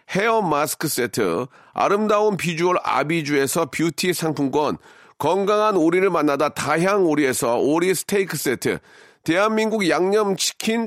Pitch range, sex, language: 170-220 Hz, male, Korean